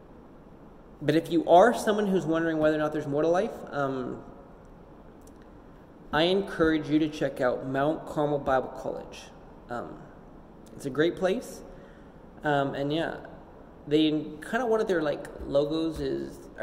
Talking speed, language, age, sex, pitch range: 160 wpm, English, 20-39, male, 145-170 Hz